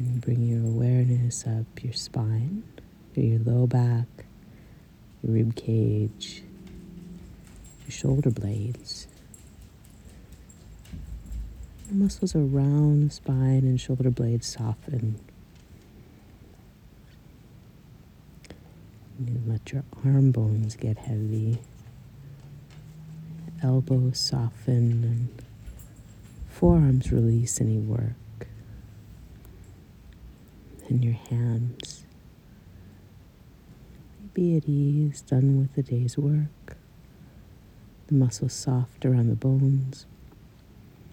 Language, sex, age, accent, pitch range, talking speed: English, female, 50-69, American, 110-135 Hz, 80 wpm